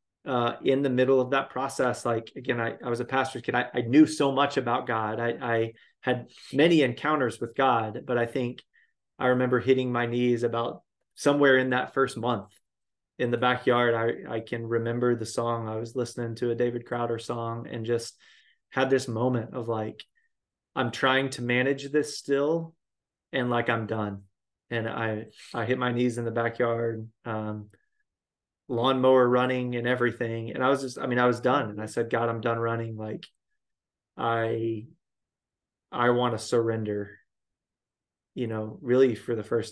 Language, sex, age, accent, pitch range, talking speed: English, male, 20-39, American, 115-130 Hz, 180 wpm